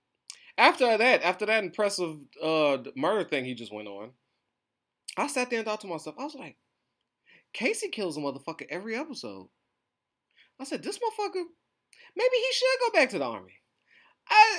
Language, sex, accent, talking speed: English, male, American, 170 wpm